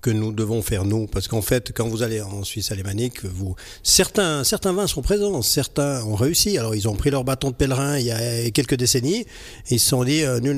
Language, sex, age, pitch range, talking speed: French, male, 40-59, 110-145 Hz, 235 wpm